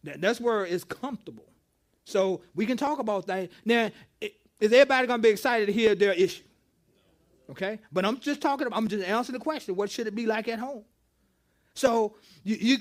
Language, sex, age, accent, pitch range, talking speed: English, male, 30-49, American, 170-235 Hz, 185 wpm